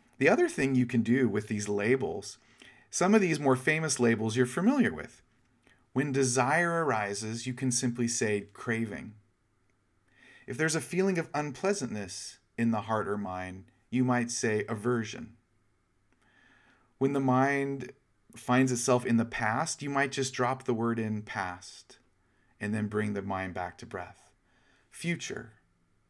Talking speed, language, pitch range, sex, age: 150 wpm, English, 105-135 Hz, male, 40-59